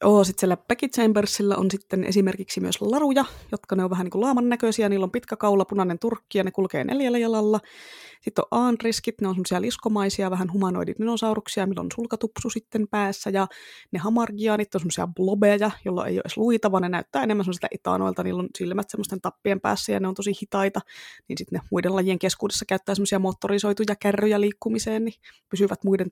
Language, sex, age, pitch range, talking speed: Finnish, female, 20-39, 185-215 Hz, 190 wpm